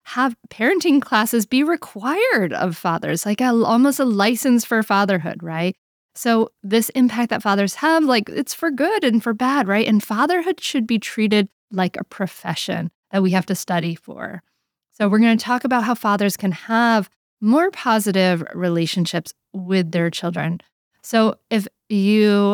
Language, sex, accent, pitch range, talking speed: English, female, American, 175-230 Hz, 165 wpm